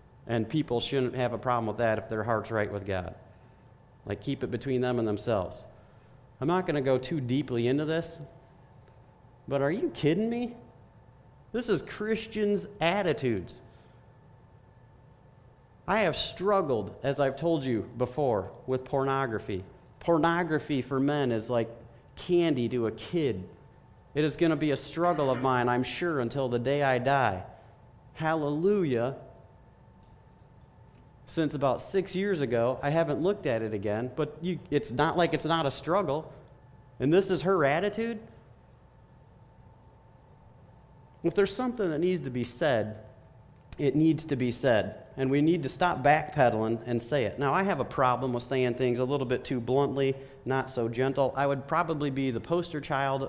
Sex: male